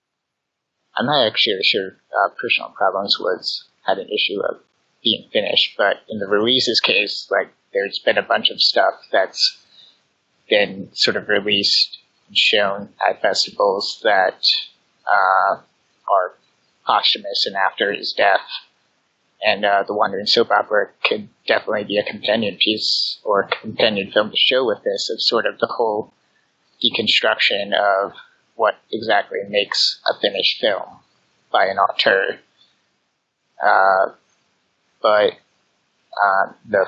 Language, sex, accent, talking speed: English, male, American, 135 wpm